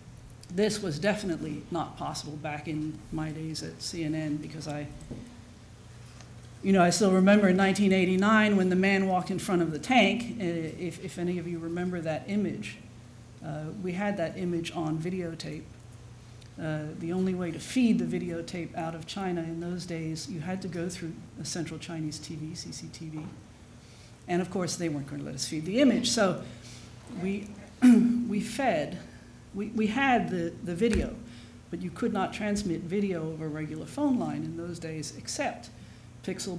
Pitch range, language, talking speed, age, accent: 150-185 Hz, English, 170 wpm, 50-69, American